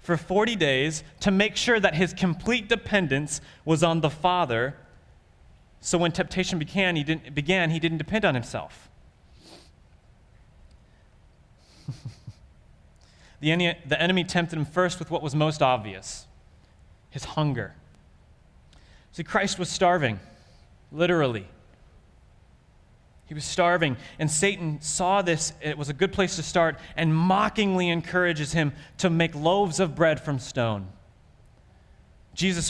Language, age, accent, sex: English, 30-49, American, male